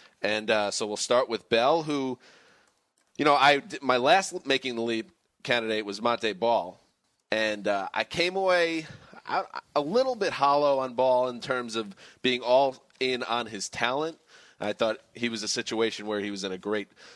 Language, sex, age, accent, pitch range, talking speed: English, male, 30-49, American, 110-130 Hz, 180 wpm